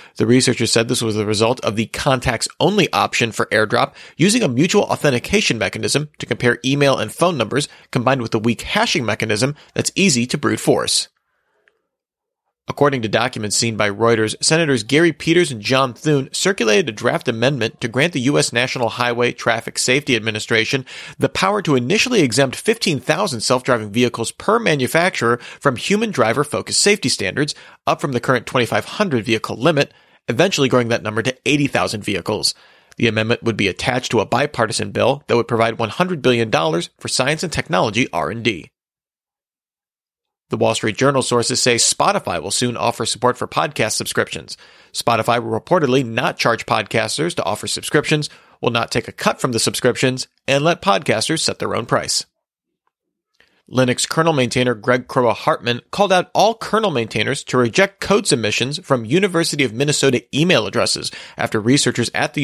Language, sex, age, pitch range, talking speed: English, male, 40-59, 115-145 Hz, 165 wpm